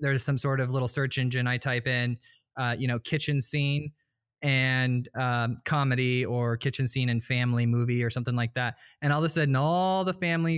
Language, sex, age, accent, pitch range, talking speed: English, male, 20-39, American, 125-145 Hz, 205 wpm